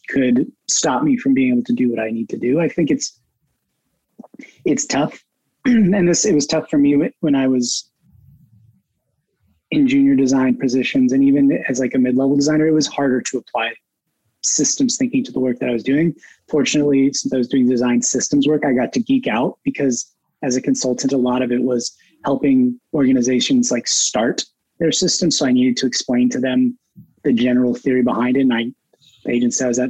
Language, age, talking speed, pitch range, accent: English, 20-39, 200 wpm, 120-165 Hz, American